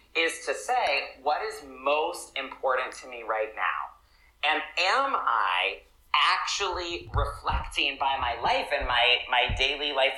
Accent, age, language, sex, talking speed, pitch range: American, 30-49, English, male, 140 wpm, 125-165 Hz